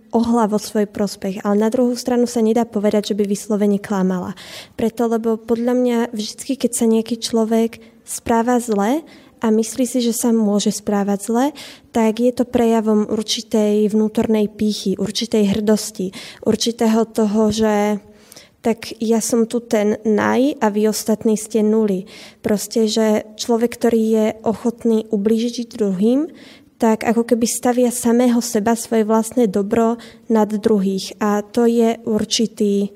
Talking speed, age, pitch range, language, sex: 145 wpm, 20-39, 200-230 Hz, Slovak, female